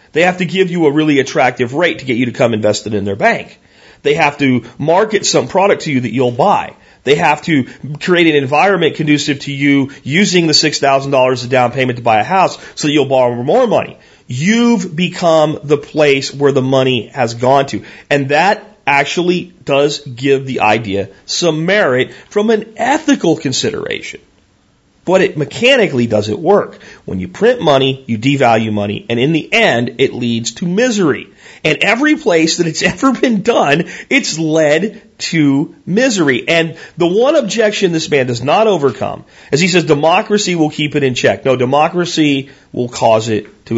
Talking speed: 180 wpm